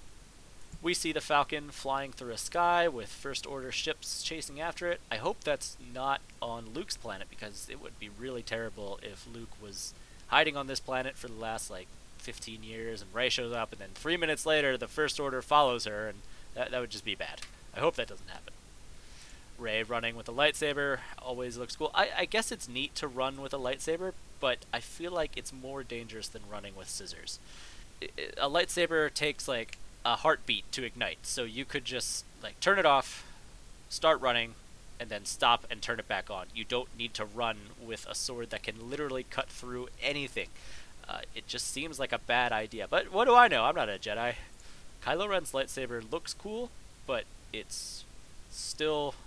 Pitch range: 110-145 Hz